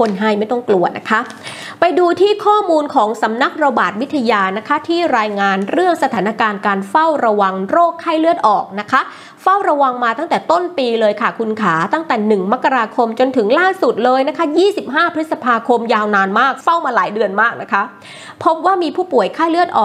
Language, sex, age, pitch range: Thai, female, 20-39, 215-315 Hz